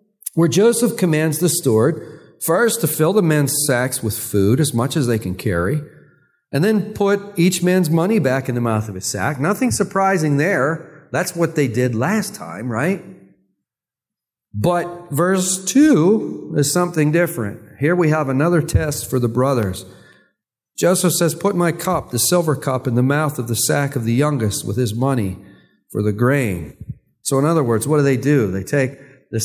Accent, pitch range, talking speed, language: American, 125-175 Hz, 185 wpm, English